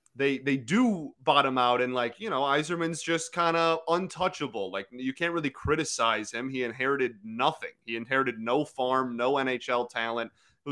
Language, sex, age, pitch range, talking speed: English, male, 30-49, 120-165 Hz, 175 wpm